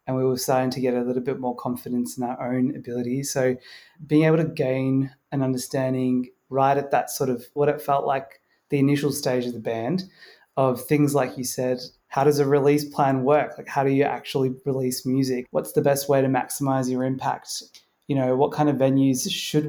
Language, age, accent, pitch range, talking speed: English, 20-39, Australian, 130-145 Hz, 215 wpm